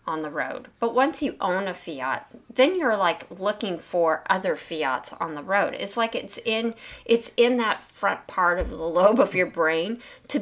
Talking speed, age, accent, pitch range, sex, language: 200 wpm, 40-59, American, 175-245 Hz, female, English